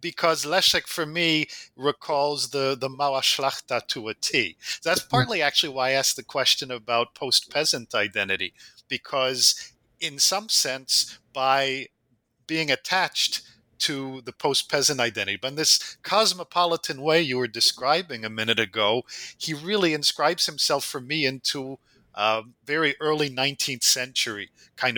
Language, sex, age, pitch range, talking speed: English, male, 50-69, 125-155 Hz, 140 wpm